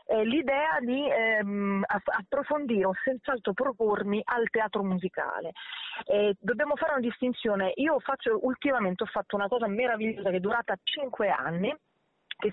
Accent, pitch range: native, 180-235 Hz